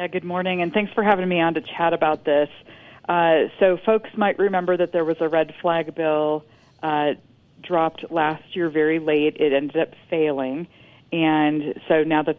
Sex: female